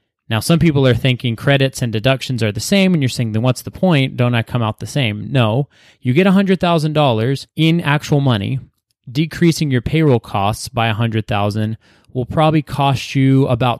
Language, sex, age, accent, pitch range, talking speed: English, male, 30-49, American, 110-135 Hz, 185 wpm